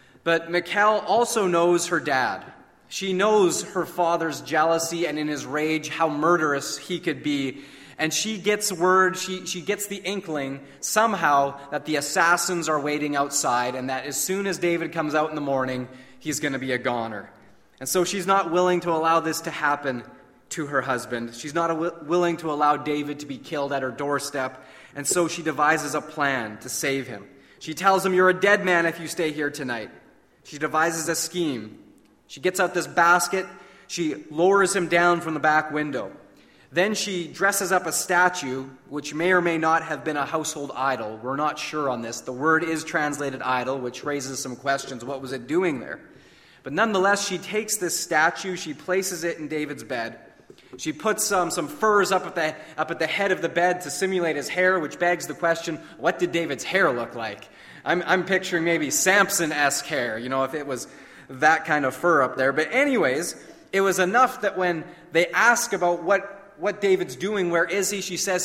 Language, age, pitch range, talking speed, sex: English, 30-49, 145-180 Hz, 200 wpm, male